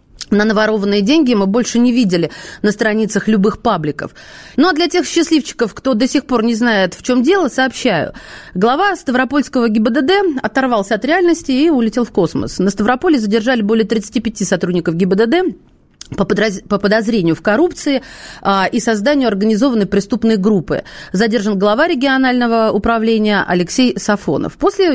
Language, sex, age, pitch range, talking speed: Russian, female, 30-49, 190-255 Hz, 145 wpm